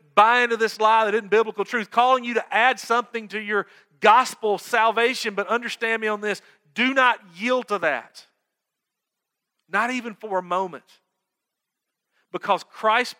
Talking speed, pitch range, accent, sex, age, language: 155 wpm, 130-215 Hz, American, male, 40-59, English